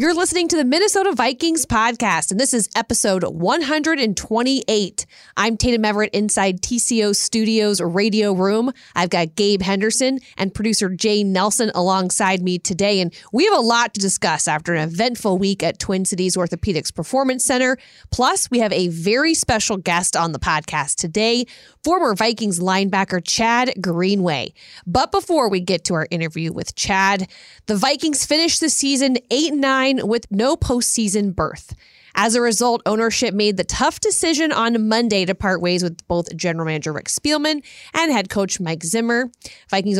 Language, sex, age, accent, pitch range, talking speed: English, female, 30-49, American, 185-250 Hz, 160 wpm